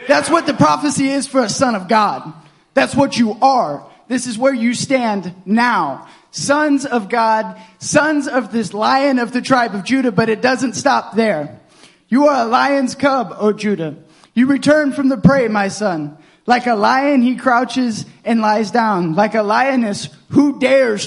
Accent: American